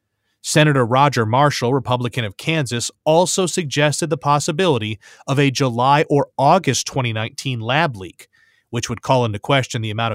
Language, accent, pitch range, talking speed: English, American, 120-155 Hz, 150 wpm